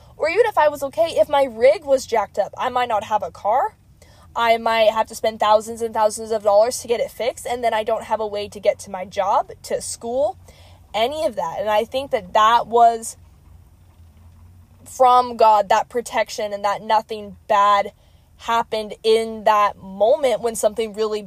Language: English